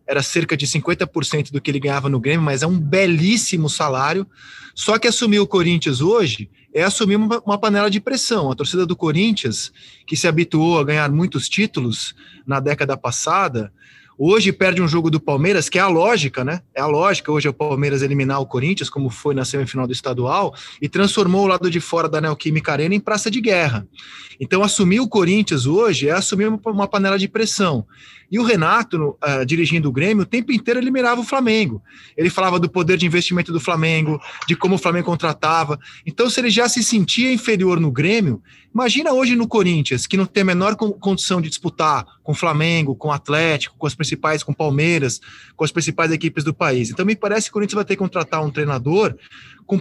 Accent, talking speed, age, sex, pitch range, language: Brazilian, 205 wpm, 20-39, male, 145-205 Hz, Portuguese